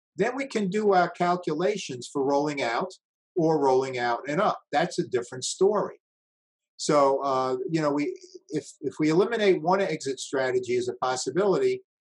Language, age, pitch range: English, 50-69, 130-180 Hz